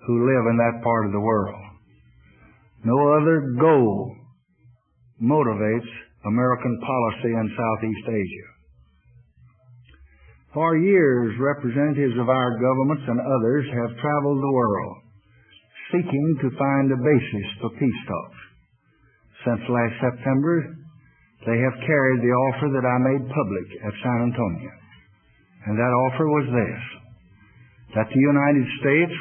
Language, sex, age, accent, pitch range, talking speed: English, male, 60-79, American, 115-140 Hz, 125 wpm